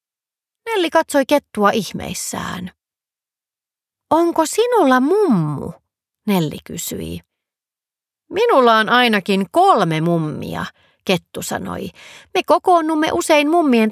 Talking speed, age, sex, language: 85 wpm, 30-49, female, Finnish